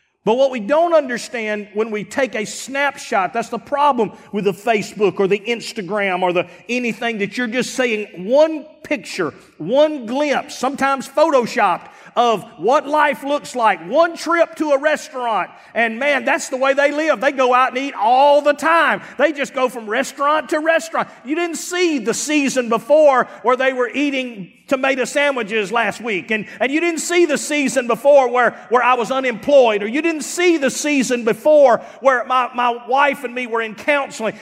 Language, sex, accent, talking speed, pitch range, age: English, male, American, 185 wpm, 235-295 Hz, 40-59